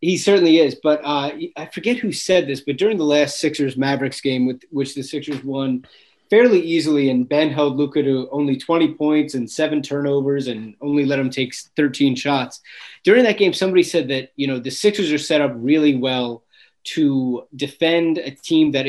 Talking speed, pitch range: 195 wpm, 135-155 Hz